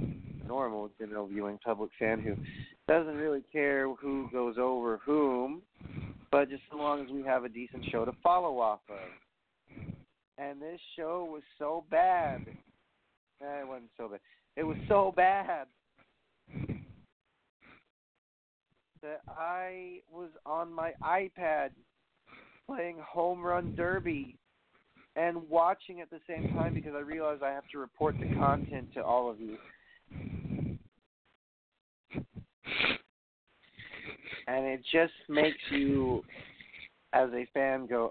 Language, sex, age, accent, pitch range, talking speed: English, male, 40-59, American, 120-165 Hz, 125 wpm